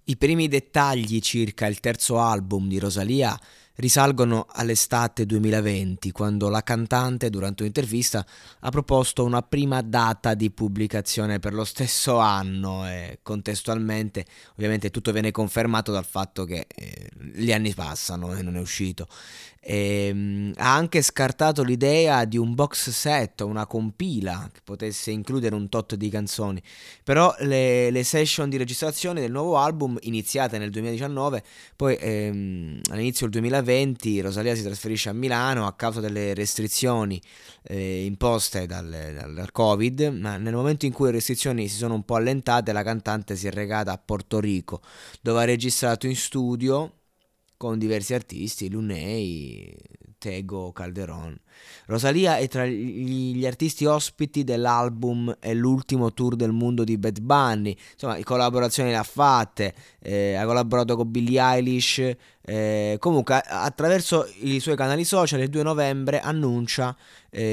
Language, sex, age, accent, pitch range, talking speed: Italian, male, 20-39, native, 105-130 Hz, 145 wpm